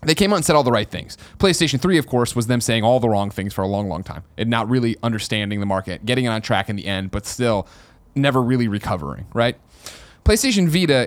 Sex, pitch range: male, 100-125 Hz